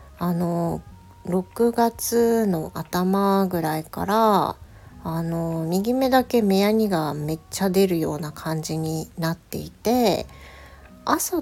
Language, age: Japanese, 40-59